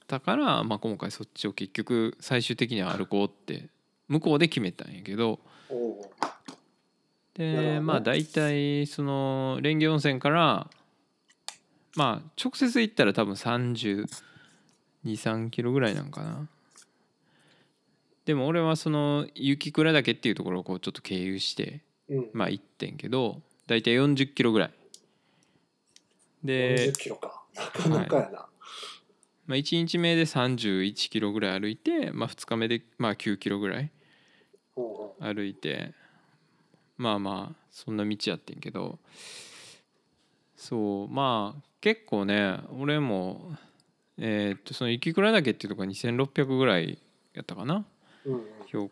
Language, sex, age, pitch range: Japanese, male, 20-39, 105-150 Hz